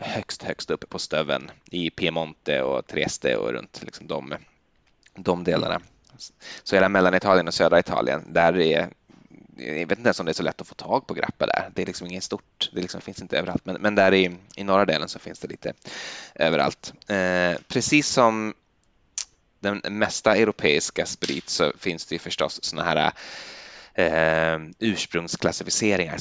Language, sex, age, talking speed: Swedish, male, 20-39, 180 wpm